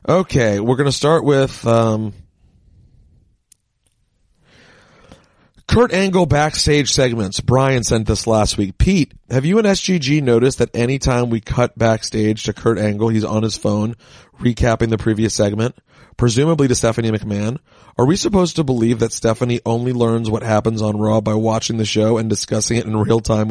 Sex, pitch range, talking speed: male, 110-140 Hz, 170 wpm